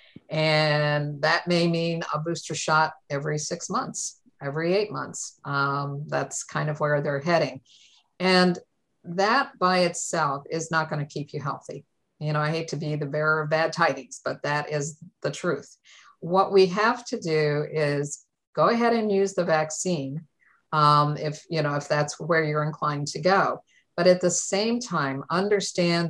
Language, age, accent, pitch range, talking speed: English, 50-69, American, 145-175 Hz, 175 wpm